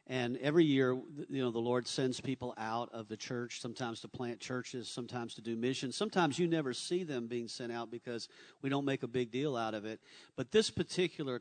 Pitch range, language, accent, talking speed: 120-145 Hz, English, American, 220 wpm